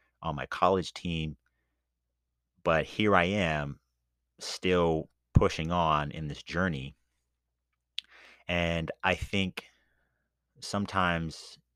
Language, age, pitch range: English, 30-49, 65-90 Hz